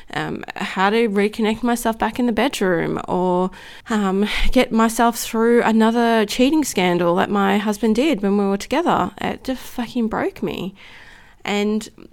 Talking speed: 155 wpm